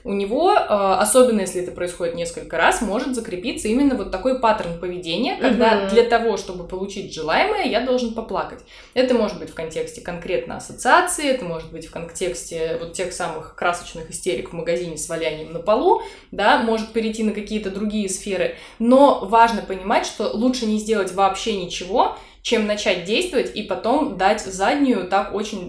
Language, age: Russian, 20-39